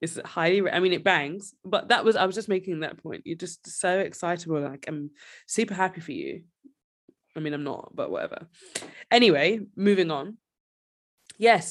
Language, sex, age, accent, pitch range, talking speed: English, female, 20-39, British, 160-210 Hz, 180 wpm